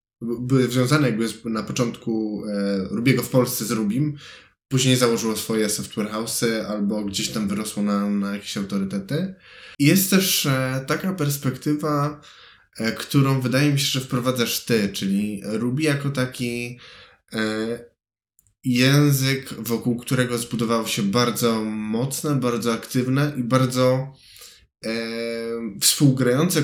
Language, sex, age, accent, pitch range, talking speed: Polish, male, 10-29, native, 115-135 Hz, 125 wpm